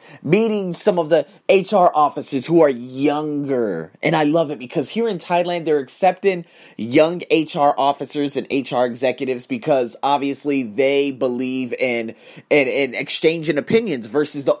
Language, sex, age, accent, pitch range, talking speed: English, male, 30-49, American, 150-235 Hz, 150 wpm